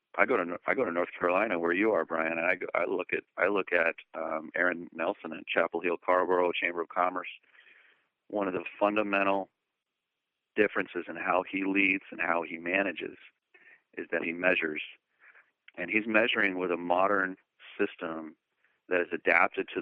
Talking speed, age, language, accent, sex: 180 wpm, 40-59, English, American, male